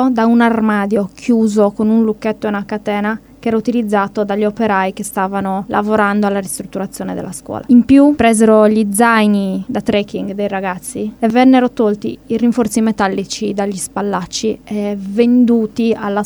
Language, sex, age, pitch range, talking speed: Italian, female, 20-39, 210-245 Hz, 155 wpm